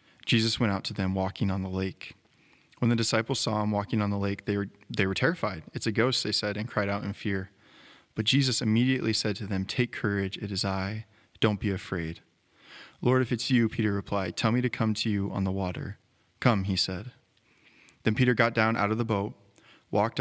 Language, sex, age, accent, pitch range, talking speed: English, male, 20-39, American, 100-115 Hz, 215 wpm